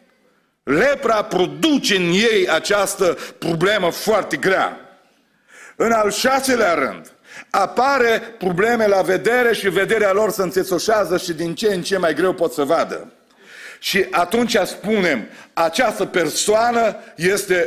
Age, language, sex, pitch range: 50-69, Romanian, male, 185-230 Hz